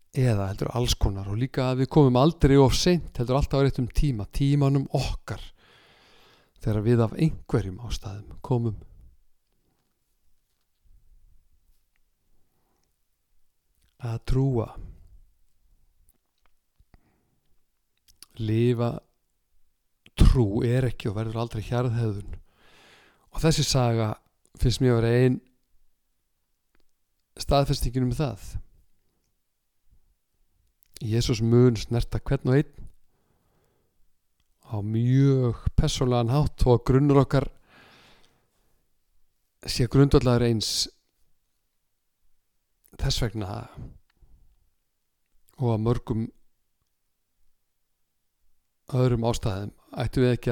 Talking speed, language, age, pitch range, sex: 85 wpm, English, 50-69, 100-130 Hz, male